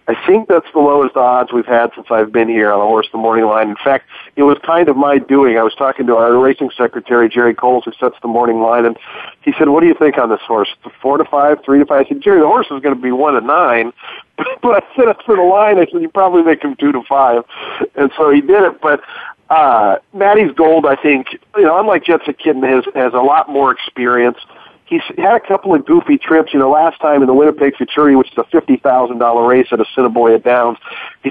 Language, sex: English, male